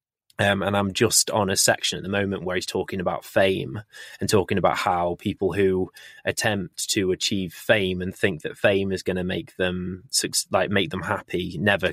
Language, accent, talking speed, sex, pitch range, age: English, British, 195 wpm, male, 95-100 Hz, 20-39